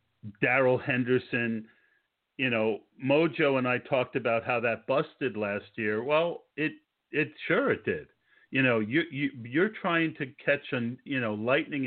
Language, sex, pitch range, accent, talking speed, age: English, male, 105-130 Hz, American, 165 wpm, 50-69